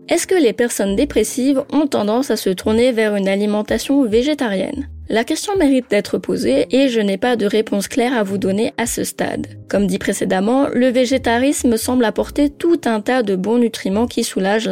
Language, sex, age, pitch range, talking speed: French, female, 20-39, 205-255 Hz, 190 wpm